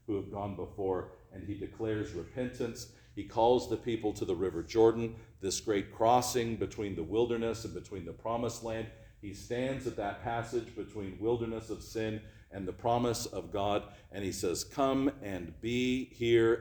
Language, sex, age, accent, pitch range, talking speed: English, male, 50-69, American, 100-115 Hz, 175 wpm